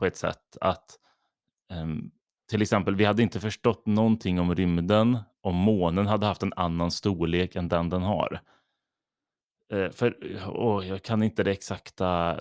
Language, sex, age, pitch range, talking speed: Swedish, male, 30-49, 90-110 Hz, 140 wpm